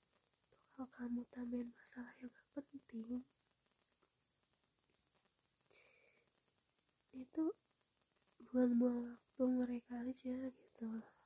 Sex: female